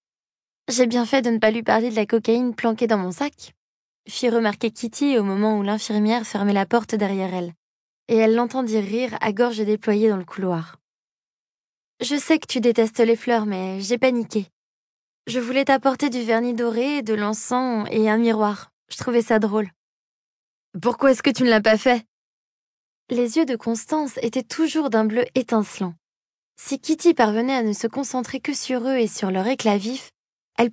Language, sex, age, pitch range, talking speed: French, female, 20-39, 210-255 Hz, 185 wpm